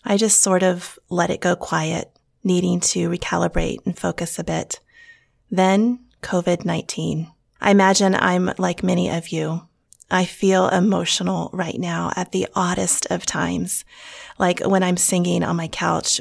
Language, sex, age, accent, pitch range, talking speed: English, female, 30-49, American, 170-195 Hz, 150 wpm